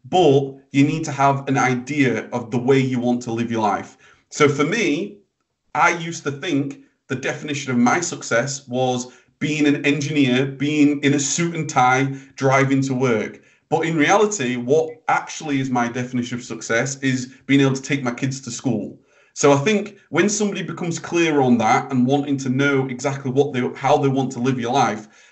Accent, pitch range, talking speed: British, 125-150 Hz, 195 wpm